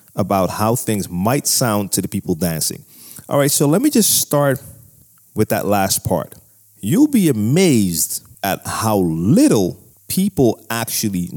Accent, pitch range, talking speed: American, 95-130 Hz, 150 wpm